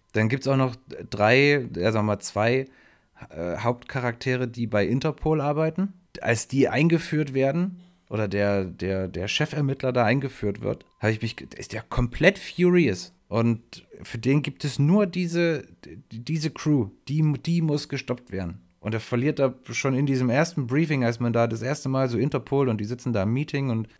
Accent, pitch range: German, 115-150 Hz